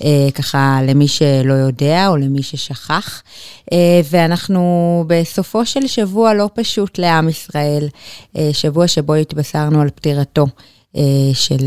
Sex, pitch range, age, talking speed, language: female, 145-185 Hz, 30-49, 130 wpm, Hebrew